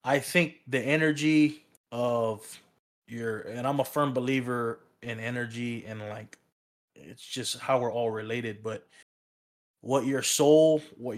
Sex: male